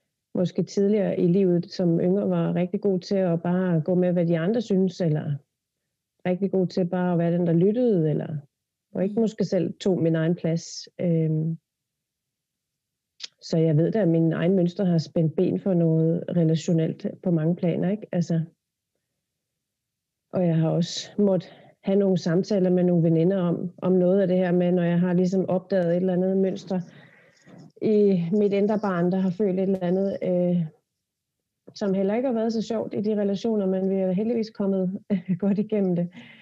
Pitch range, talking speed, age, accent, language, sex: 170-195 Hz, 185 wpm, 30-49, native, Danish, female